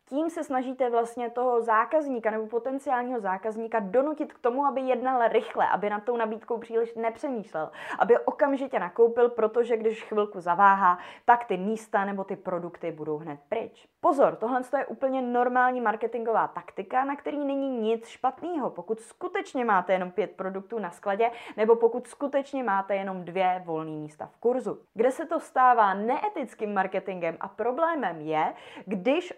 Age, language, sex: 20-39, Czech, female